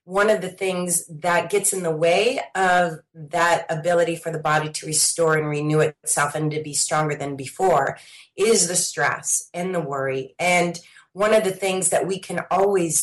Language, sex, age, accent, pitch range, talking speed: English, female, 30-49, American, 160-190 Hz, 190 wpm